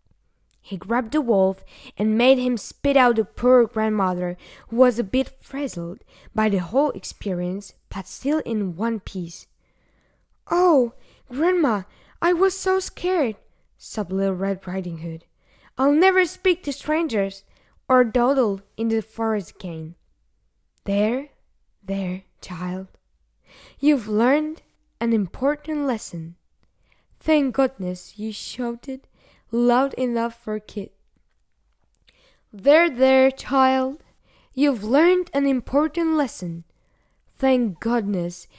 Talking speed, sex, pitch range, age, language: 115 wpm, female, 195-270 Hz, 10-29, Slovak